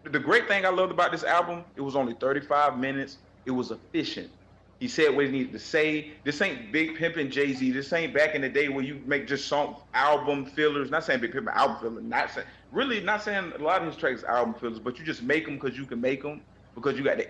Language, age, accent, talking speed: English, 30-49, American, 255 wpm